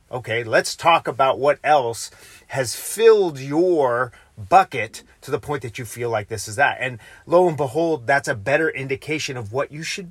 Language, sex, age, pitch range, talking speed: English, male, 30-49, 120-150 Hz, 190 wpm